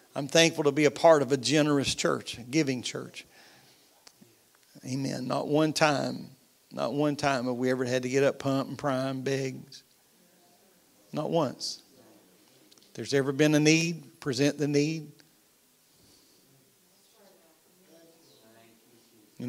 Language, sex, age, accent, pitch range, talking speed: English, male, 50-69, American, 135-170 Hz, 130 wpm